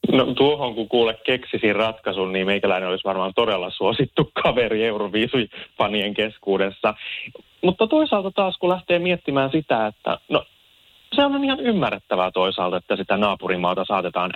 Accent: native